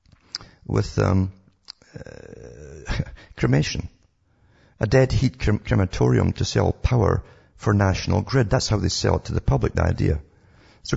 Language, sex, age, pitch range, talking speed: English, male, 50-69, 90-115 Hz, 135 wpm